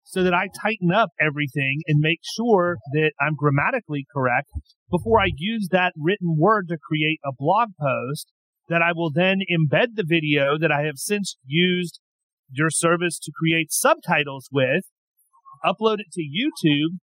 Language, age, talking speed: English, 40-59, 160 wpm